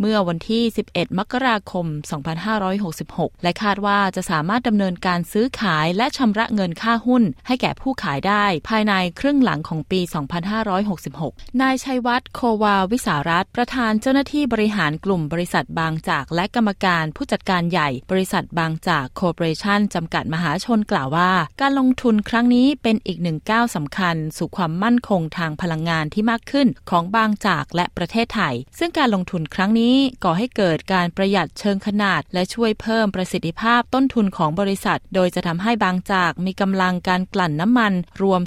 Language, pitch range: Thai, 170-225 Hz